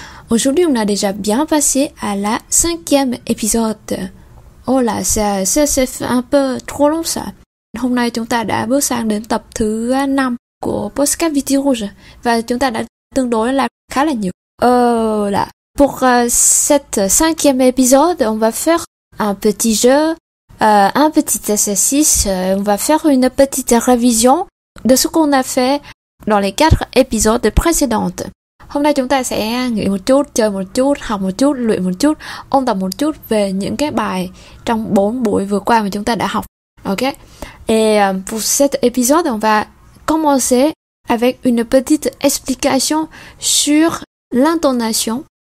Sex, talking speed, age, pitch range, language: female, 165 wpm, 20-39, 215-280 Hz, Vietnamese